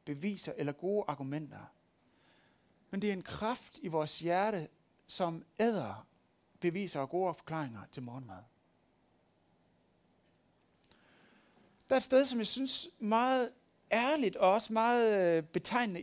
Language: Danish